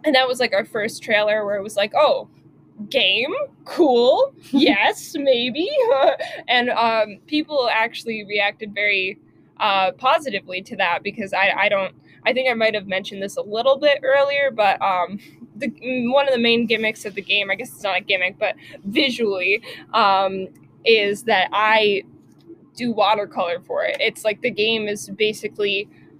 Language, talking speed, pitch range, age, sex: English, 170 wpm, 200-255 Hz, 20-39, female